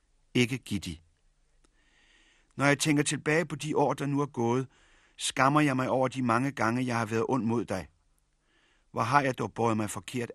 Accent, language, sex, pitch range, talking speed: native, Danish, male, 105-130 Hz, 190 wpm